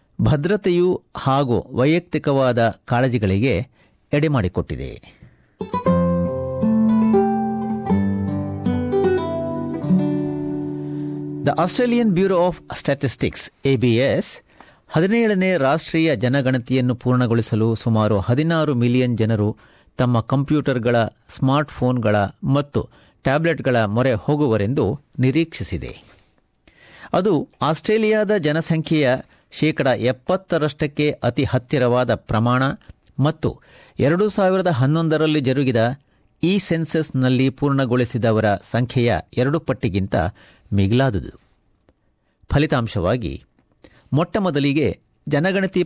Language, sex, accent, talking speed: Kannada, male, native, 65 wpm